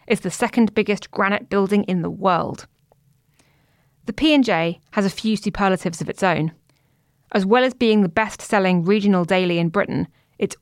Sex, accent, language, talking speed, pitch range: female, British, English, 170 wpm, 180-235 Hz